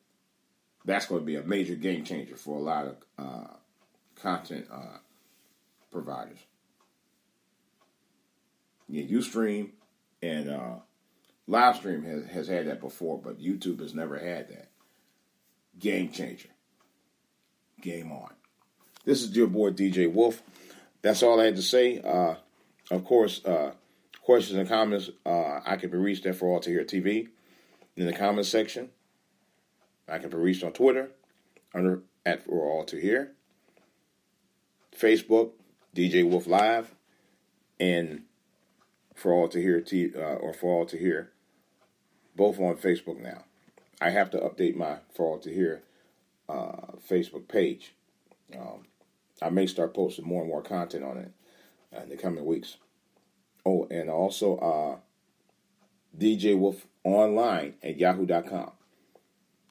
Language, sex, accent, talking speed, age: English, male, American, 140 wpm, 40-59